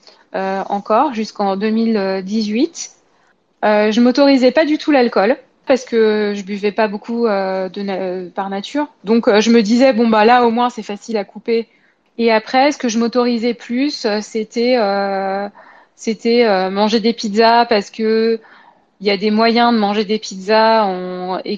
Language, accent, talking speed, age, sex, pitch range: French, French, 180 wpm, 20-39, female, 200-240 Hz